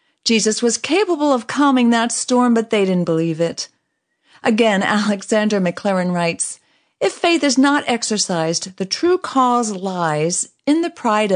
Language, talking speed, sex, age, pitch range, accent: English, 150 wpm, female, 50-69, 180-275 Hz, American